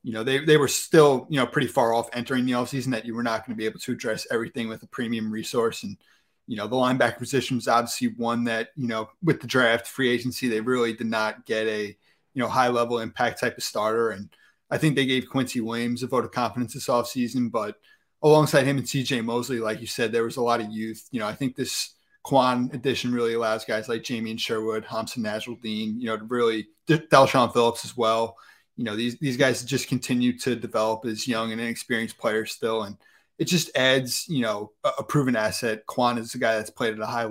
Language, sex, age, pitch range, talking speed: English, male, 30-49, 115-130 Hz, 235 wpm